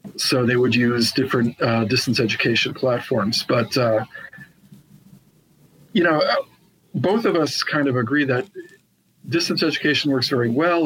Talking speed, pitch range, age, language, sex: 140 wpm, 115-135 Hz, 50-69, English, male